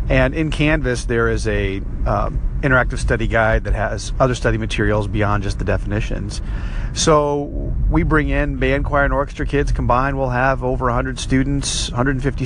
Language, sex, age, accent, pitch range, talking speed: English, male, 40-59, American, 105-130 Hz, 170 wpm